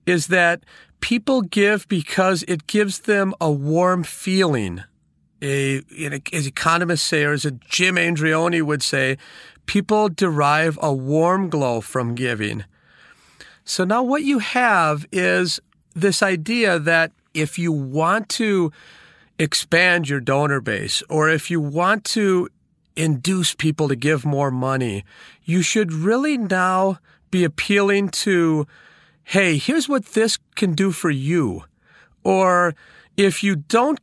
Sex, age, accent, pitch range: male, 40-59, American, 150-200 Hz